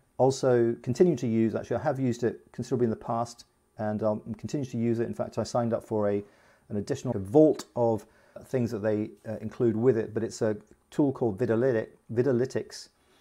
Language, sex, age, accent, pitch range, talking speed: English, male, 40-59, British, 110-130 Hz, 195 wpm